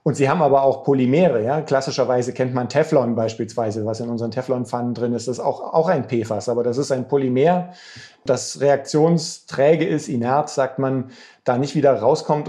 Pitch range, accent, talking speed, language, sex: 120-140 Hz, German, 180 wpm, German, male